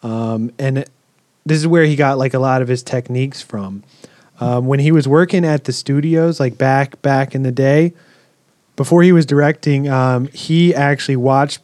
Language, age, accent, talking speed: English, 30-49, American, 185 wpm